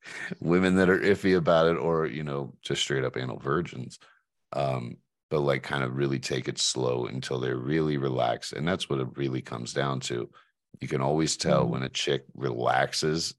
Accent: American